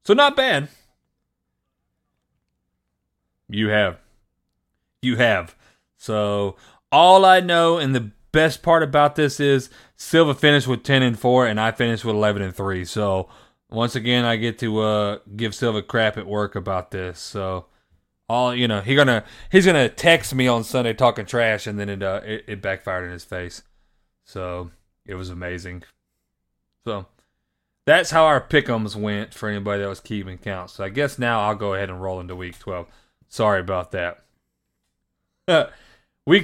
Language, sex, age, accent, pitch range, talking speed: English, male, 30-49, American, 95-140 Hz, 165 wpm